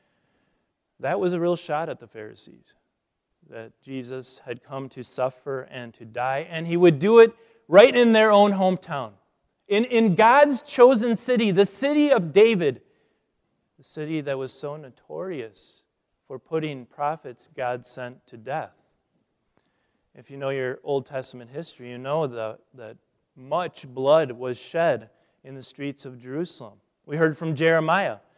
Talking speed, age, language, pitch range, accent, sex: 150 wpm, 30-49, English, 125-165 Hz, American, male